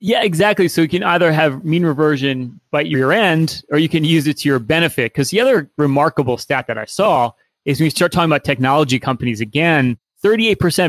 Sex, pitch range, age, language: male, 135-165 Hz, 30-49, English